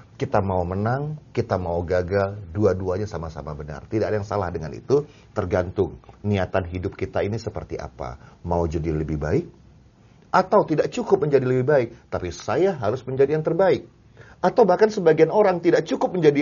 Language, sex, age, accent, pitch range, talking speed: Indonesian, male, 40-59, native, 85-125 Hz, 165 wpm